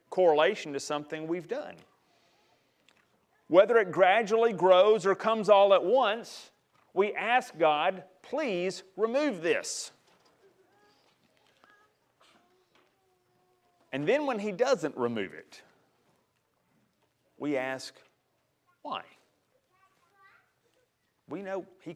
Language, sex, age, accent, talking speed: English, male, 40-59, American, 90 wpm